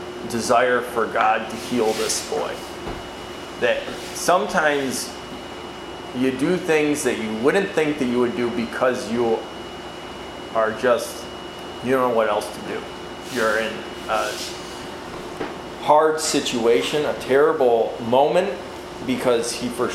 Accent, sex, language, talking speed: American, male, English, 125 wpm